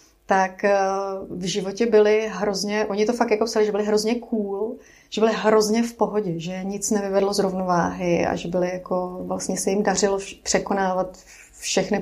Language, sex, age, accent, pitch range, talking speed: Czech, female, 30-49, native, 185-215 Hz, 170 wpm